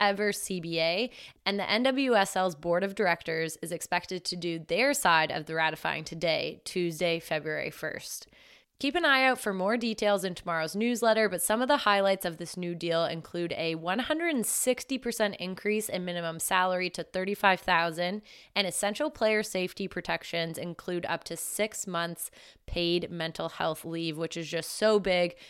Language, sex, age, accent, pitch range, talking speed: English, female, 20-39, American, 170-205 Hz, 160 wpm